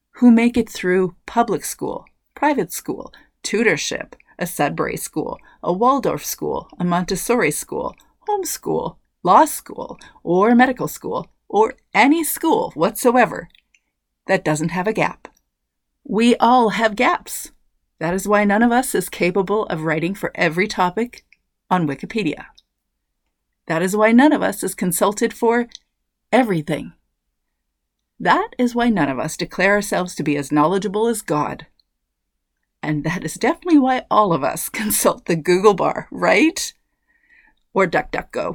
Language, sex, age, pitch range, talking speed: English, female, 40-59, 160-235 Hz, 145 wpm